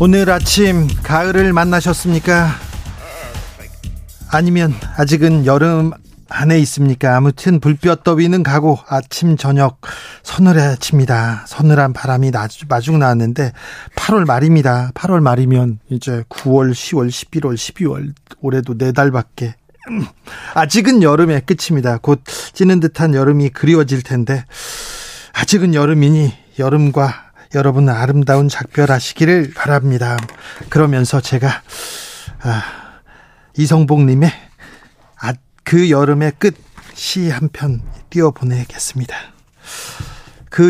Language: Korean